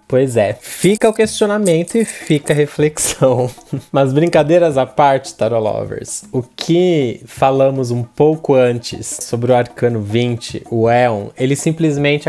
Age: 20-39